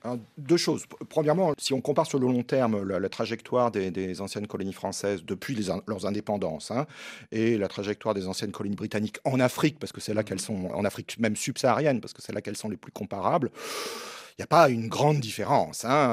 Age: 40-59